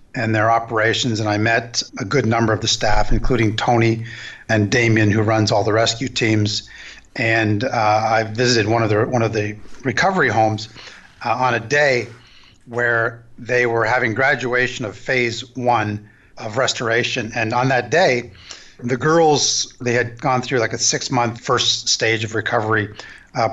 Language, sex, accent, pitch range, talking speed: English, male, American, 110-130 Hz, 170 wpm